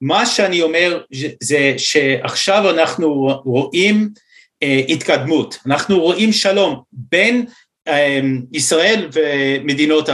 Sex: male